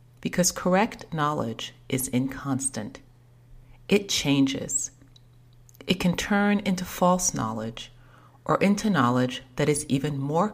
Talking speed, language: 115 wpm, English